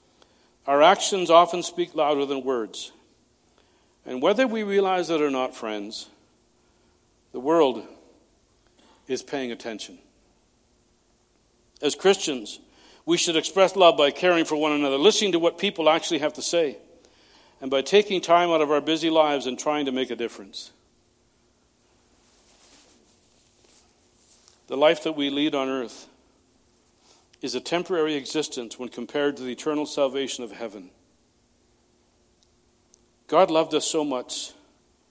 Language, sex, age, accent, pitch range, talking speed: English, male, 60-79, American, 130-165 Hz, 135 wpm